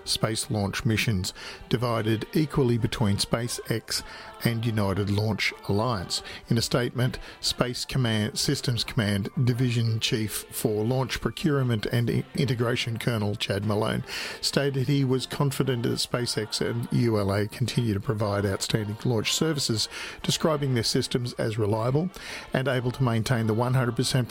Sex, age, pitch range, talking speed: male, 50-69, 110-135 Hz, 130 wpm